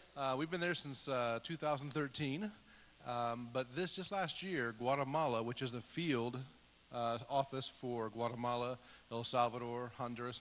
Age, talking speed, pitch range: 40-59, 145 wpm, 115-140 Hz